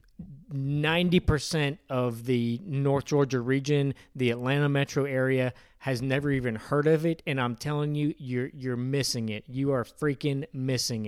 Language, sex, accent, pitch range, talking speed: English, male, American, 130-160 Hz, 150 wpm